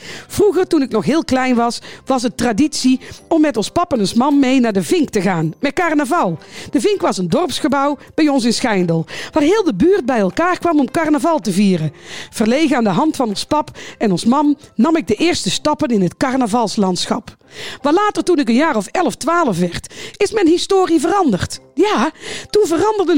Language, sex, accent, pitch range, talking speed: Dutch, female, Dutch, 220-310 Hz, 205 wpm